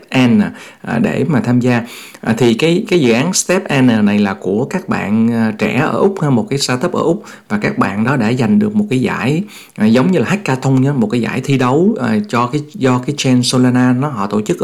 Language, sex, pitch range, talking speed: Vietnamese, male, 125-180 Hz, 225 wpm